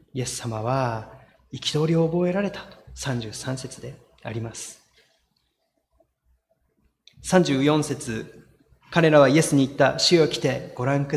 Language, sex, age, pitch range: Japanese, male, 30-49, 120-150 Hz